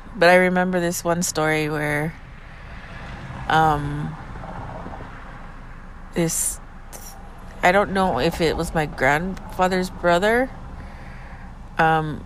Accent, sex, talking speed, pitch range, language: American, female, 95 wpm, 115-170 Hz, English